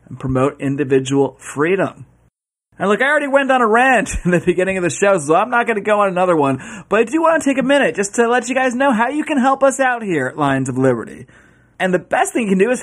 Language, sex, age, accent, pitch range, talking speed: English, male, 30-49, American, 180-250 Hz, 275 wpm